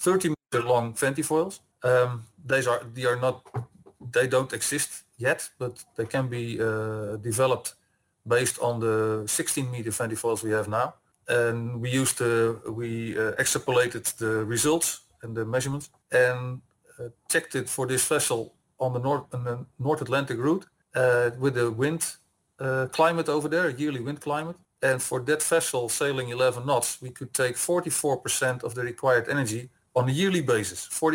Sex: male